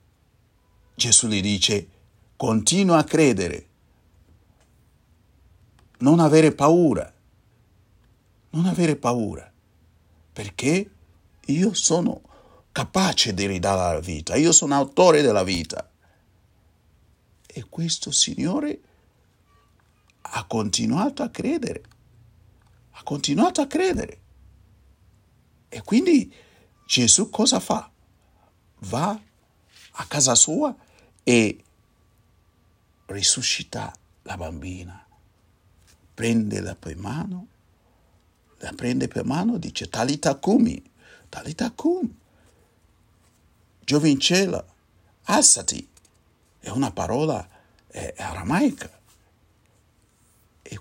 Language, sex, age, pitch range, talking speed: Italian, male, 60-79, 90-130 Hz, 85 wpm